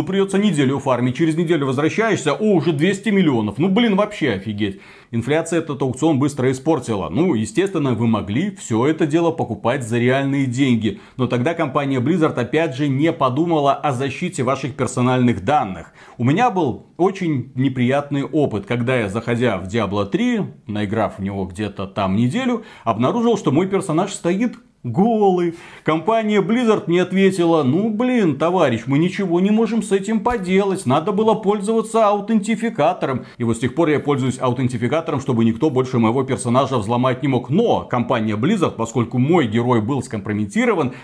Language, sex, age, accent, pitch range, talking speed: Russian, male, 30-49, native, 120-180 Hz, 160 wpm